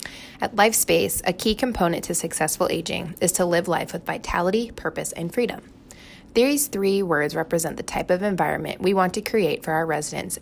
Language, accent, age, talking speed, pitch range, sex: English, American, 20-39, 185 wpm, 160-215 Hz, female